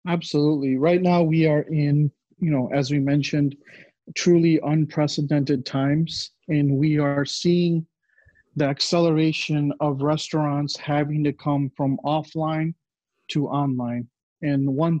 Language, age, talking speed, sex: English, 40-59, 125 wpm, male